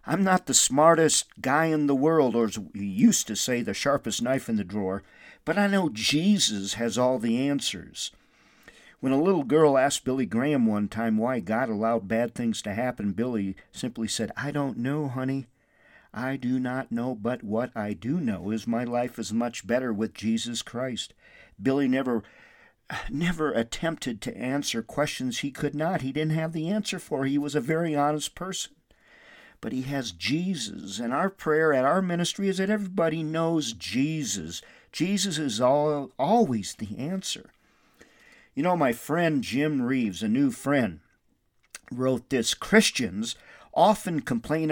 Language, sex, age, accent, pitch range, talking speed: English, male, 50-69, American, 120-180 Hz, 165 wpm